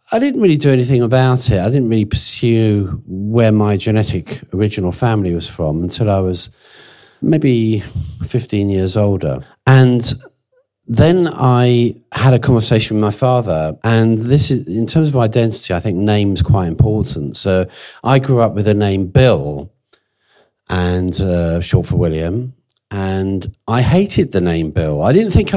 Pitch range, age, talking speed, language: 100-135 Hz, 40-59, 165 wpm, English